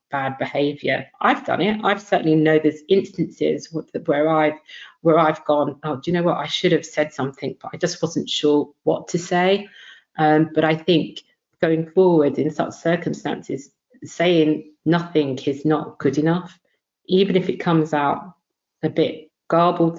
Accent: British